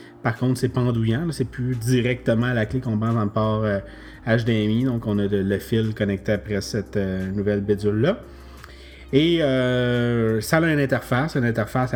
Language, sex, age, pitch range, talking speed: French, male, 30-49, 110-135 Hz, 175 wpm